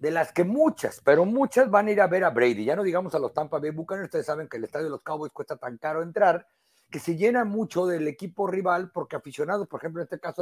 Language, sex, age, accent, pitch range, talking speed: Spanish, male, 50-69, Mexican, 145-200 Hz, 270 wpm